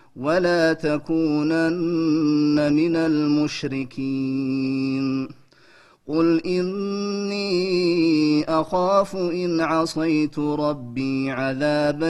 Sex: male